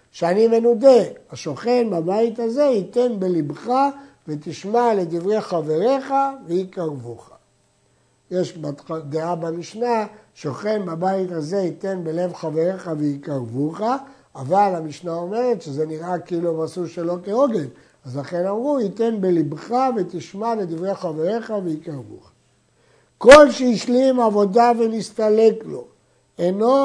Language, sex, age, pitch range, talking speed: Hebrew, male, 60-79, 165-225 Hz, 100 wpm